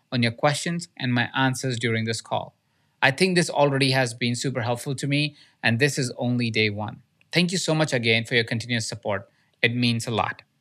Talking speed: 215 wpm